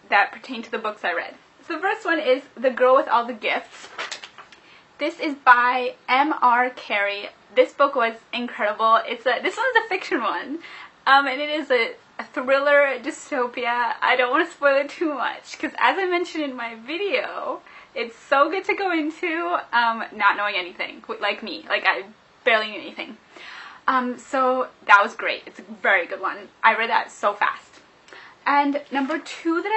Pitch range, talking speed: 230-290 Hz, 190 wpm